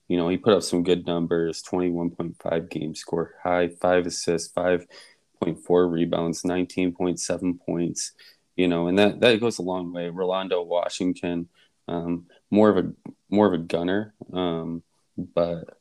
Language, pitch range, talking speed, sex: English, 85-95 Hz, 170 wpm, male